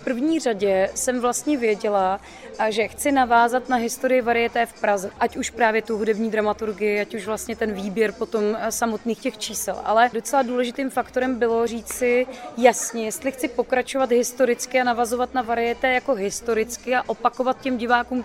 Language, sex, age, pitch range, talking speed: Czech, female, 20-39, 215-245 Hz, 170 wpm